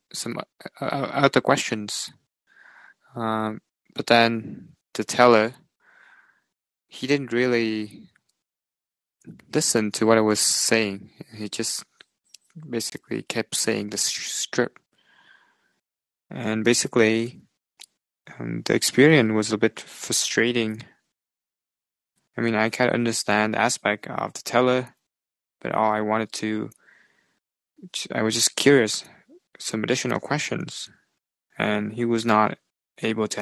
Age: 20-39